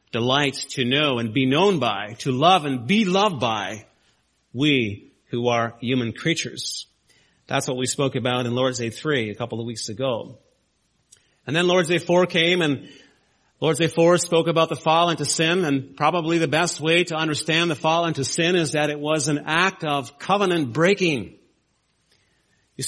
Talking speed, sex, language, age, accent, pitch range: 180 wpm, male, English, 40-59, American, 135-170 Hz